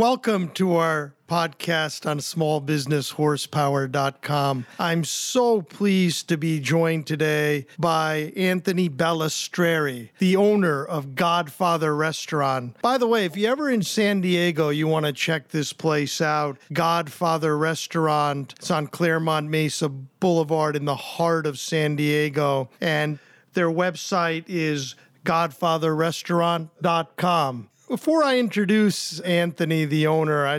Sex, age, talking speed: male, 50-69, 120 wpm